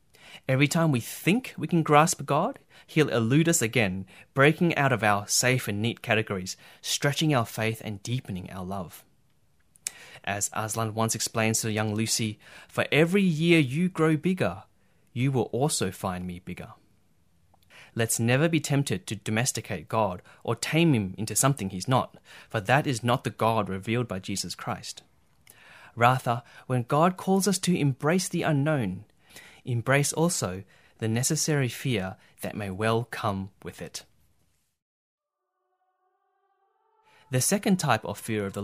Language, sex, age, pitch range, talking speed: English, male, 30-49, 105-155 Hz, 150 wpm